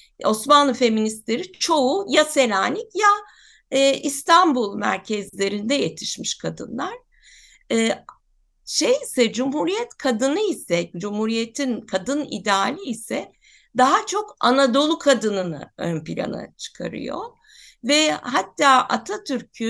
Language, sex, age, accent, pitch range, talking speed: Turkish, female, 60-79, native, 200-295 Hz, 90 wpm